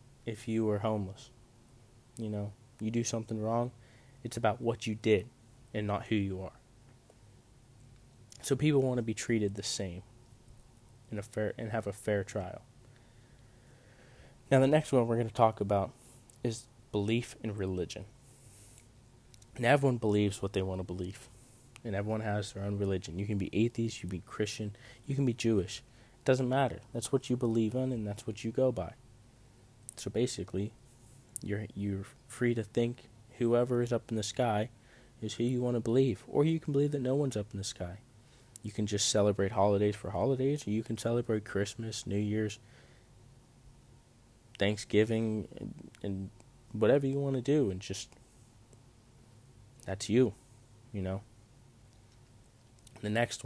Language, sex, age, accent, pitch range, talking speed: English, male, 20-39, American, 105-120 Hz, 165 wpm